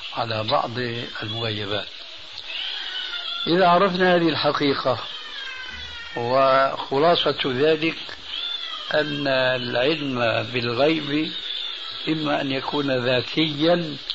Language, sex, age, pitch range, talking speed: Arabic, male, 60-79, 125-155 Hz, 70 wpm